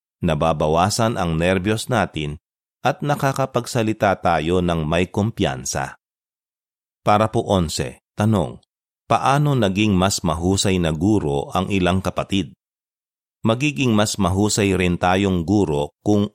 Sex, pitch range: male, 90-110 Hz